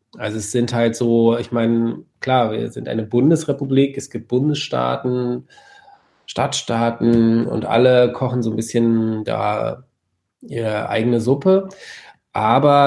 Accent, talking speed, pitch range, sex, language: German, 125 wpm, 115-140 Hz, male, German